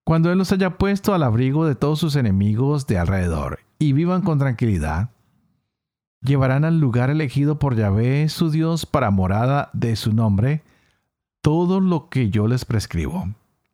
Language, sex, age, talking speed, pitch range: Spanish, male, 50-69, 155 wpm, 110-155 Hz